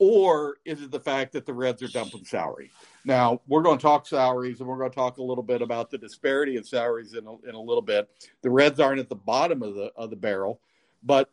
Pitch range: 115-135 Hz